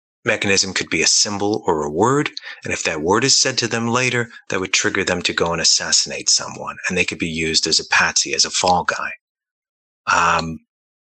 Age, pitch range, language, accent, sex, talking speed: 30-49, 90-120 Hz, English, American, male, 215 wpm